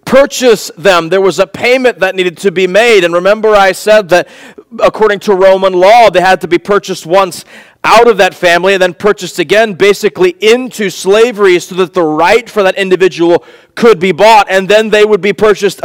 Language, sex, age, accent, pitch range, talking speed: English, male, 40-59, American, 170-210 Hz, 200 wpm